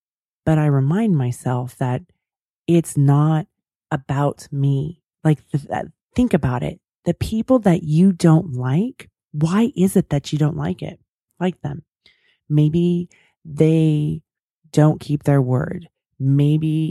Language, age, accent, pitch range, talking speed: English, 30-49, American, 135-170 Hz, 130 wpm